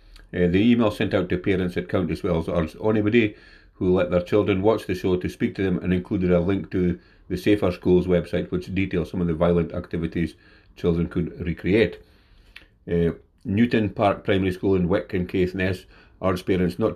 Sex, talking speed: male, 200 wpm